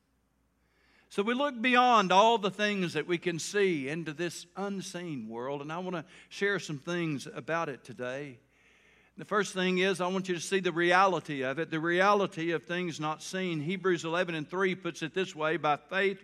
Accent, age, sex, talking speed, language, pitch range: American, 60-79, male, 200 wpm, English, 150-190 Hz